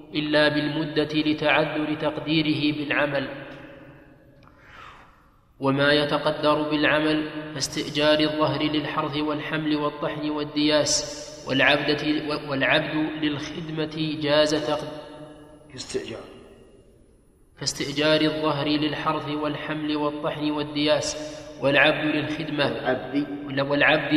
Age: 20-39